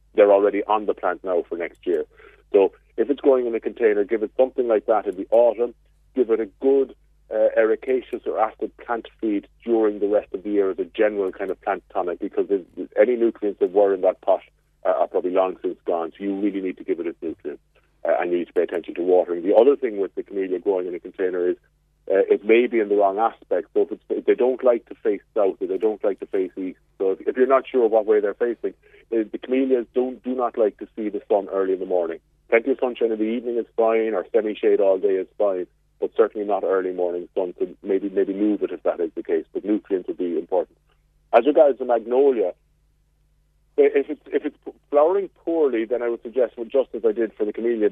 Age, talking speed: 40-59, 245 wpm